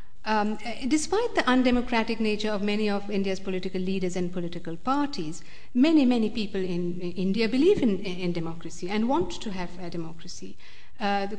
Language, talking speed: English, 165 wpm